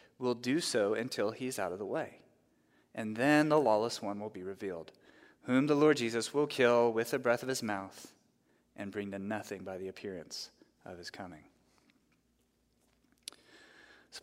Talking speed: 170 wpm